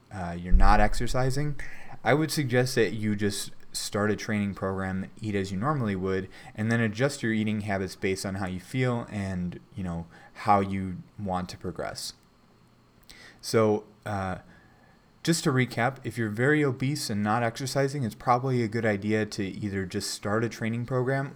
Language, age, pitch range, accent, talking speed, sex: English, 20-39, 95-115 Hz, American, 175 wpm, male